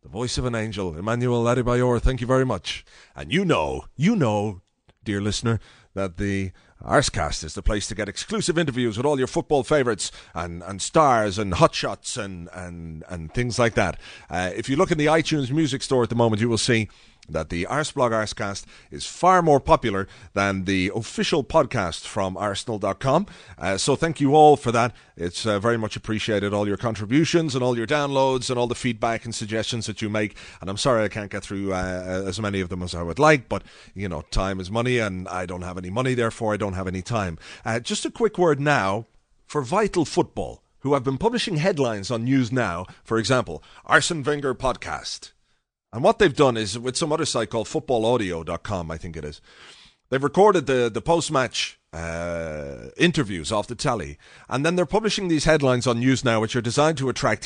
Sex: male